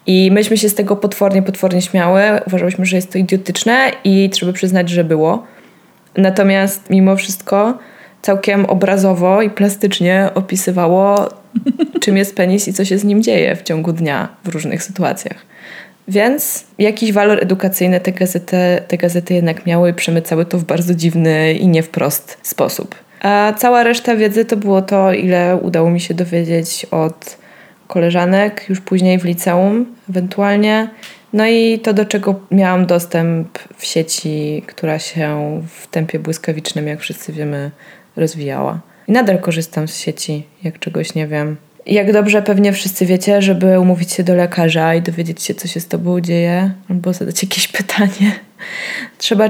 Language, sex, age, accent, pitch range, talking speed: Polish, female, 20-39, native, 175-200 Hz, 160 wpm